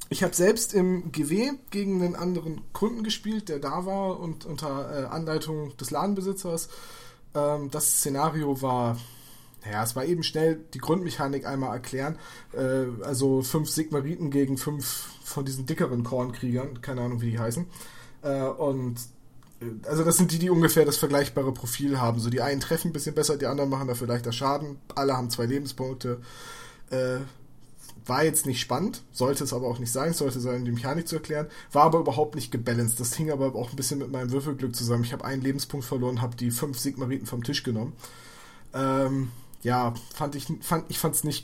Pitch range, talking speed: 125-155 Hz, 180 wpm